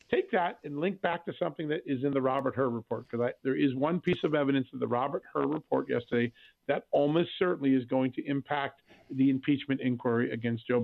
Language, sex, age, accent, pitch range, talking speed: English, male, 50-69, American, 130-160 Hz, 220 wpm